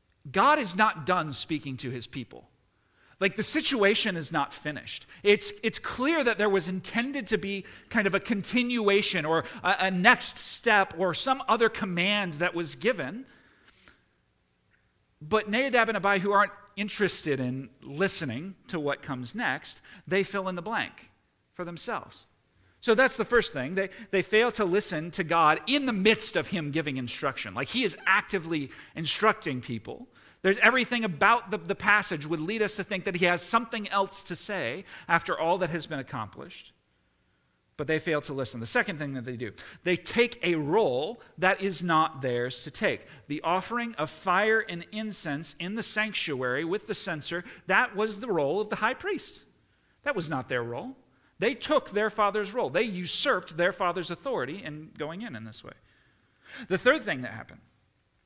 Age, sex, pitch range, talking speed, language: 40-59, male, 155-215 Hz, 180 wpm, English